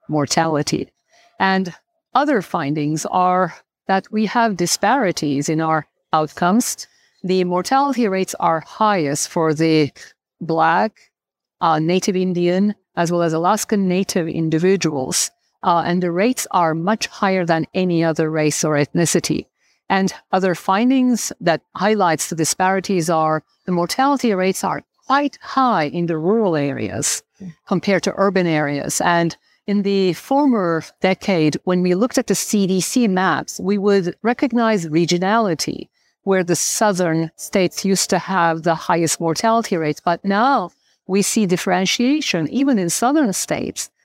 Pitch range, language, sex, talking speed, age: 160-200 Hz, English, female, 135 wpm, 50-69